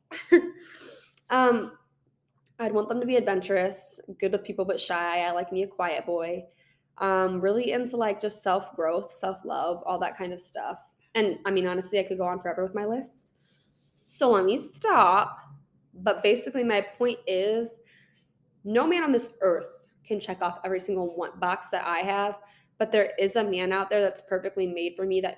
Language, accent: English, American